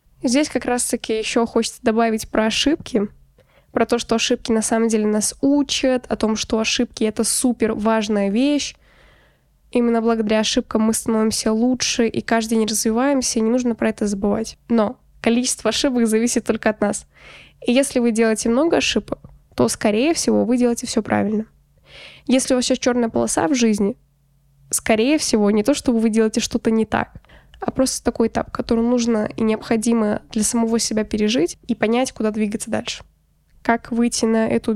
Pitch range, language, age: 220-250 Hz, Russian, 10-29